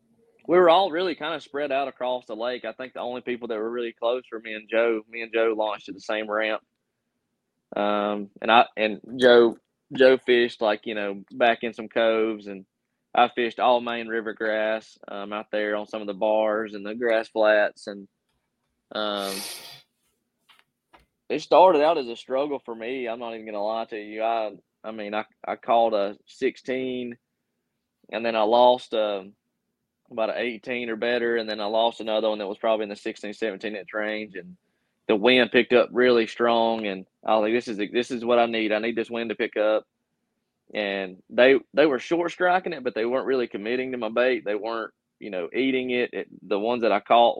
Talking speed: 215 wpm